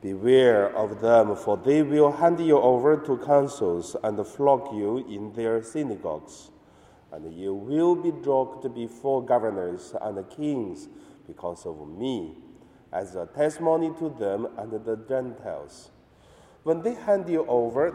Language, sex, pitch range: Chinese, male, 115-155 Hz